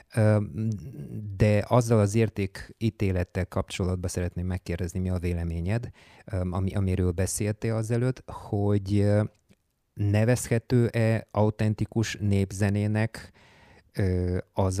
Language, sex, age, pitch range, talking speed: Hungarian, male, 30-49, 95-110 Hz, 75 wpm